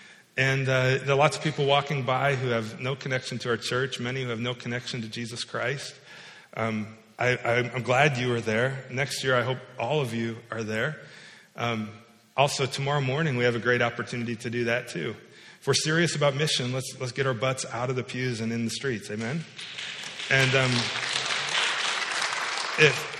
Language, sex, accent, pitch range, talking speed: English, male, American, 120-155 Hz, 195 wpm